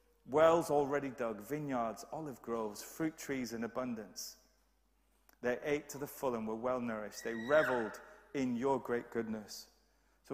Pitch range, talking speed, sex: 125-165 Hz, 150 wpm, male